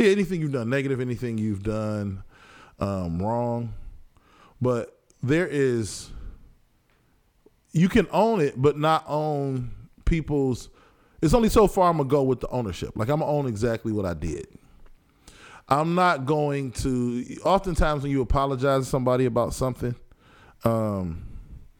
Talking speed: 145 wpm